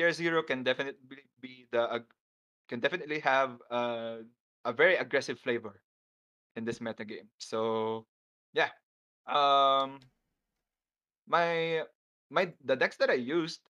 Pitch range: 115-135 Hz